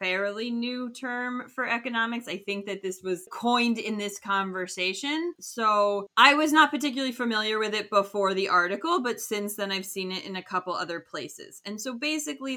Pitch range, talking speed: 200-240 Hz, 185 wpm